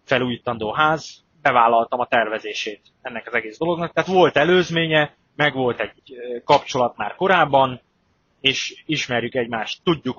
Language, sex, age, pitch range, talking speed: Hungarian, male, 20-39, 120-150 Hz, 130 wpm